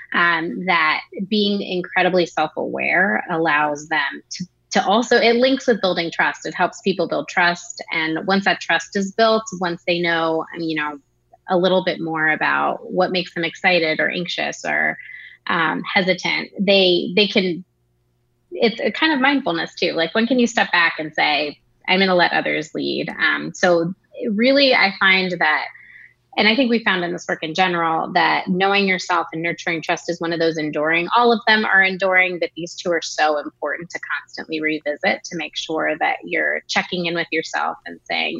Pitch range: 160-195 Hz